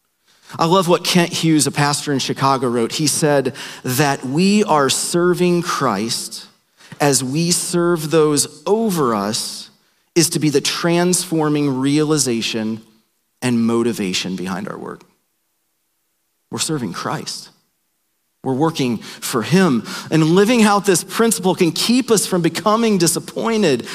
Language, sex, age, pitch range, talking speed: English, male, 40-59, 150-200 Hz, 130 wpm